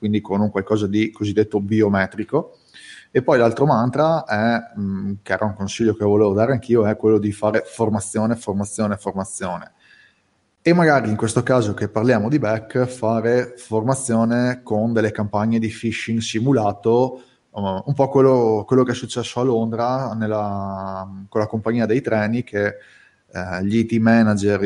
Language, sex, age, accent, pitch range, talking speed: Italian, male, 20-39, native, 105-120 Hz, 155 wpm